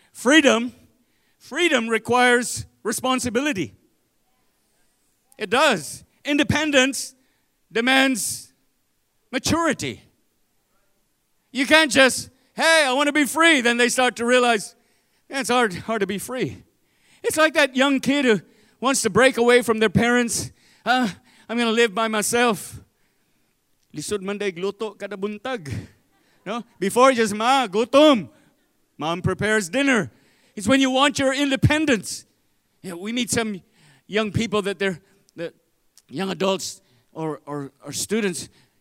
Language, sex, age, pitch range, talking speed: English, male, 40-59, 195-260 Hz, 125 wpm